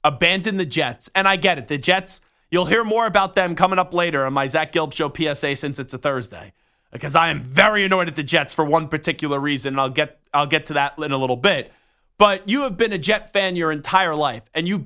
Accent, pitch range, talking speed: American, 155-215 Hz, 245 wpm